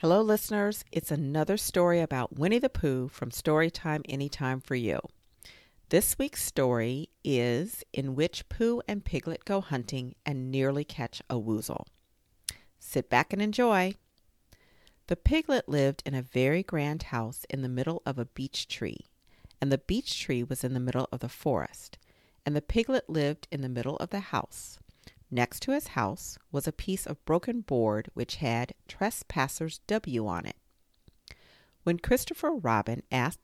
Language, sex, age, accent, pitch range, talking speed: English, female, 50-69, American, 120-175 Hz, 160 wpm